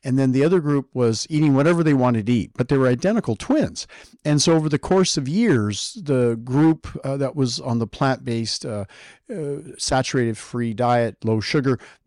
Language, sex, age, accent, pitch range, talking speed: English, male, 50-69, American, 115-150 Hz, 190 wpm